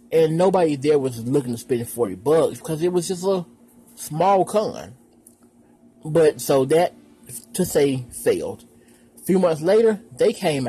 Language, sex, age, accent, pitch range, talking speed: English, male, 30-49, American, 125-180 Hz, 155 wpm